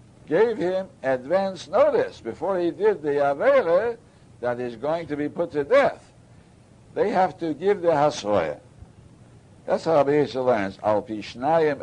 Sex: male